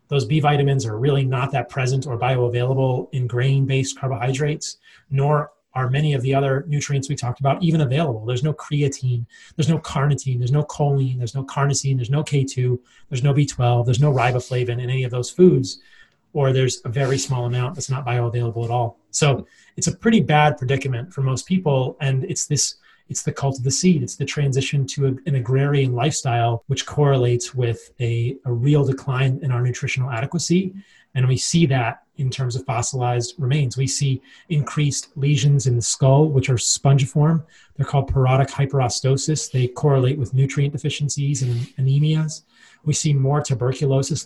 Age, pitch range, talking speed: 30-49, 125-145 Hz, 180 wpm